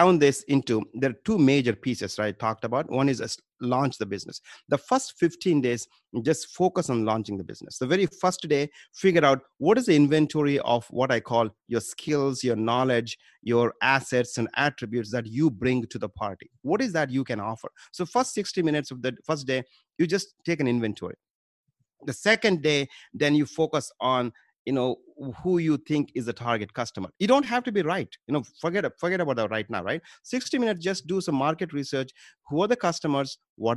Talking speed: 210 wpm